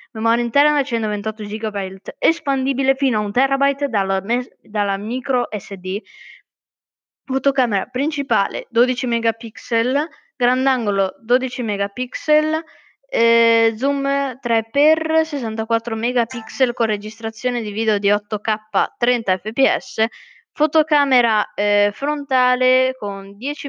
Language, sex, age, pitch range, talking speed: Italian, female, 20-39, 210-265 Hz, 90 wpm